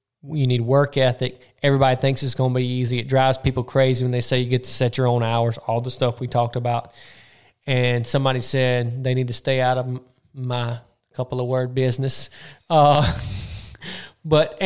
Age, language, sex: 20-39, English, male